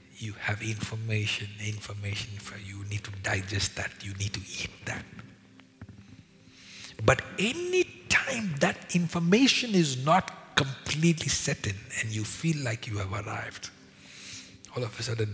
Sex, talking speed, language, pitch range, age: male, 145 wpm, English, 100-110 Hz, 60-79